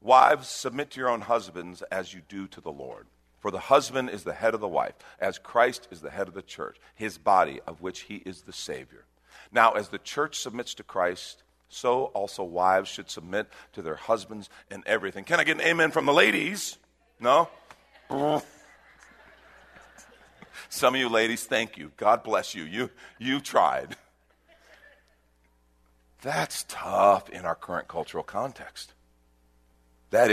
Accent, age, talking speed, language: American, 50-69, 165 wpm, English